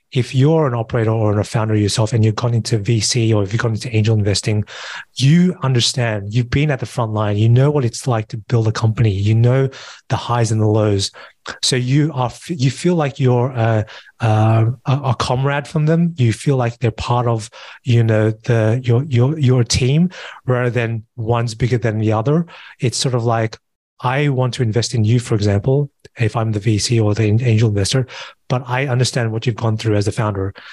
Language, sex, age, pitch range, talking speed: English, male, 30-49, 110-130 Hz, 210 wpm